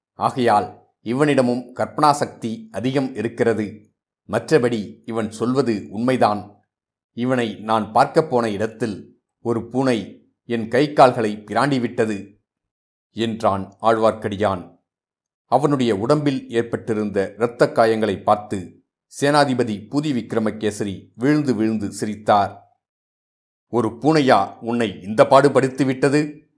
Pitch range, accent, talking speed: 105-130 Hz, native, 90 wpm